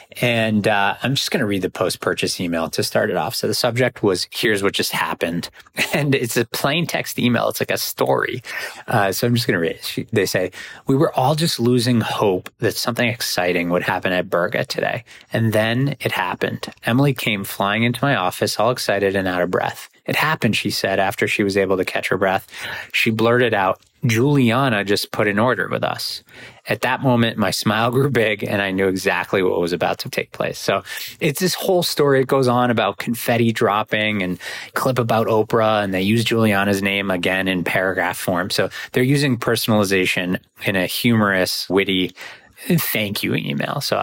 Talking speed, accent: 200 wpm, American